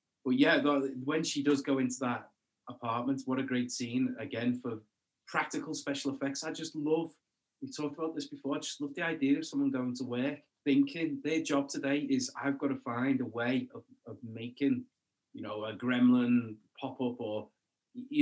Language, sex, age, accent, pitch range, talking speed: English, male, 20-39, British, 125-160 Hz, 190 wpm